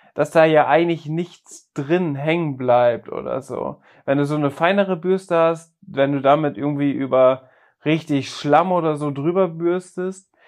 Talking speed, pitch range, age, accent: 160 wpm, 135-175 Hz, 20-39, German